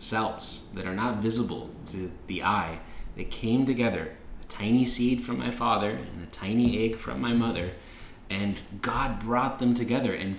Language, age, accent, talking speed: English, 20-39, American, 175 wpm